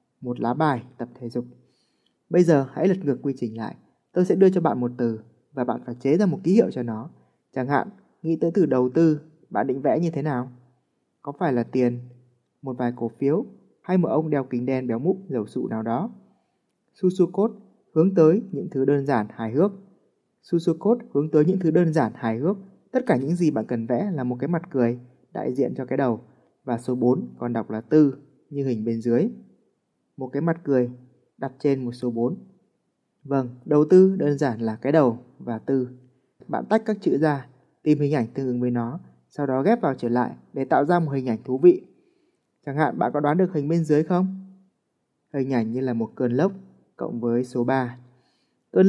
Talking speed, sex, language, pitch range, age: 220 wpm, male, Vietnamese, 125-165 Hz, 20-39